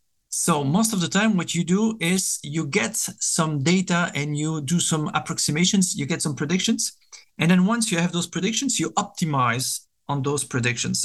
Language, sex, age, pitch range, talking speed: English, male, 50-69, 150-195 Hz, 185 wpm